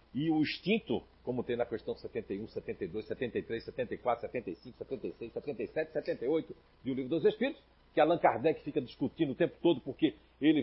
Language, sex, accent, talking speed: Portuguese, male, Brazilian, 170 wpm